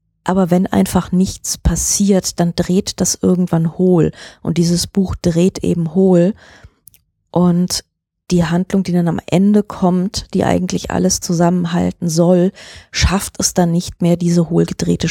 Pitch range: 165-185 Hz